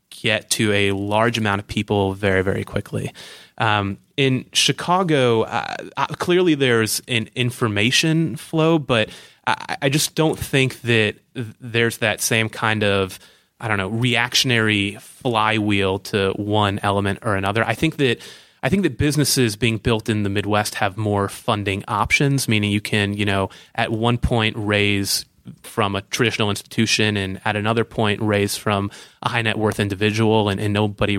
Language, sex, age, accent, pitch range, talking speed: English, male, 20-39, American, 100-125 Hz, 165 wpm